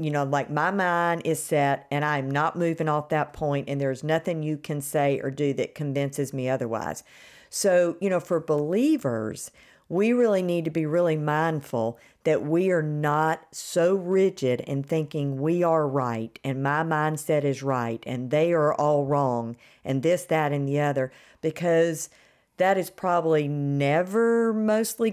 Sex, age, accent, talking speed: female, 50-69, American, 170 wpm